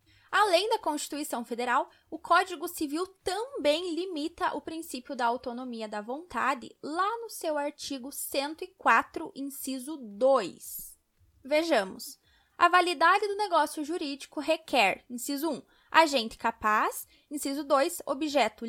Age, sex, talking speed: 10-29, female, 115 wpm